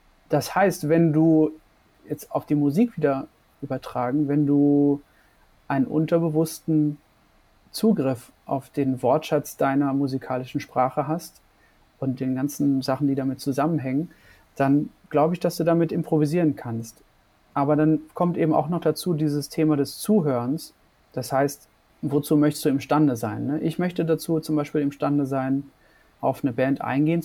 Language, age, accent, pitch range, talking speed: German, 30-49, German, 135-155 Hz, 145 wpm